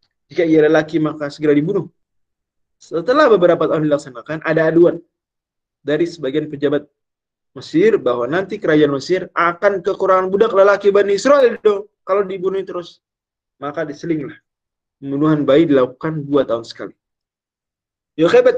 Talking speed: 125 wpm